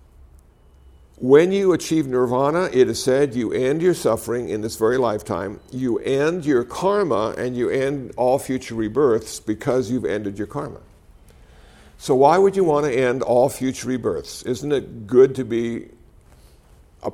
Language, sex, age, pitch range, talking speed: English, male, 60-79, 95-135 Hz, 160 wpm